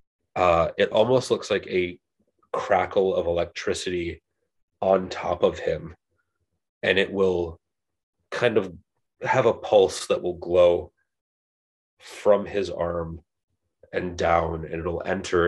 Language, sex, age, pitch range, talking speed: English, male, 30-49, 85-95 Hz, 125 wpm